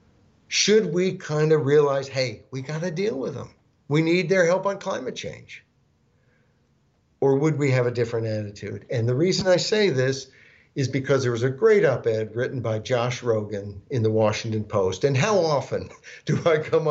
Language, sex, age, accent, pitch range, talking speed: English, male, 60-79, American, 115-155 Hz, 190 wpm